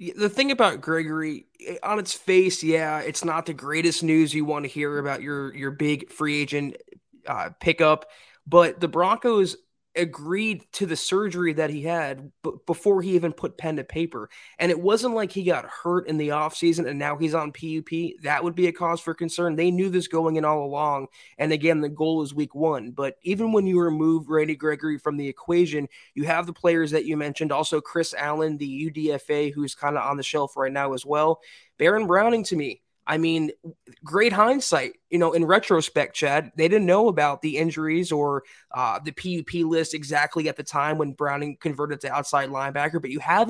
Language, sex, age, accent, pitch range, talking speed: English, male, 20-39, American, 150-175 Hz, 205 wpm